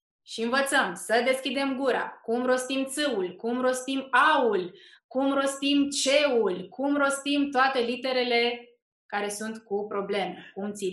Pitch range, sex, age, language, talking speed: 200-240 Hz, female, 20-39, Romanian, 125 wpm